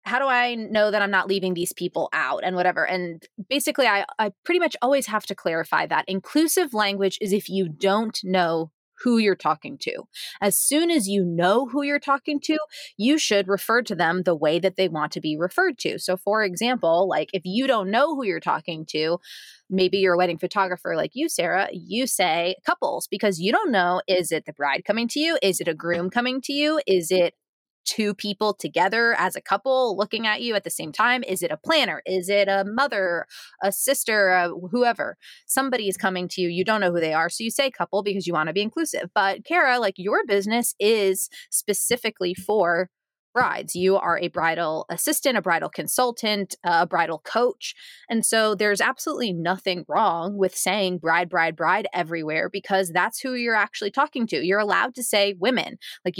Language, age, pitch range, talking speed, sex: English, 20-39, 180-245 Hz, 205 wpm, female